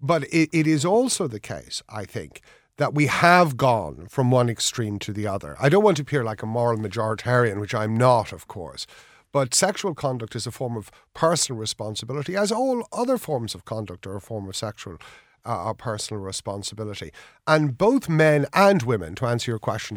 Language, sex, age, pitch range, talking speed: English, male, 50-69, 110-150 Hz, 195 wpm